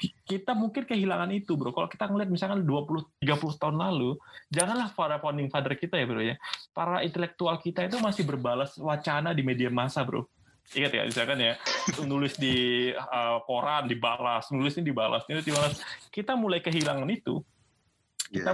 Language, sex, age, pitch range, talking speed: Indonesian, male, 20-39, 135-185 Hz, 165 wpm